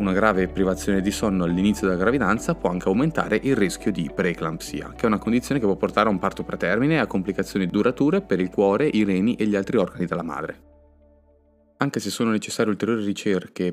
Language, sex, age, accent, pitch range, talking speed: Italian, male, 20-39, native, 95-115 Hz, 205 wpm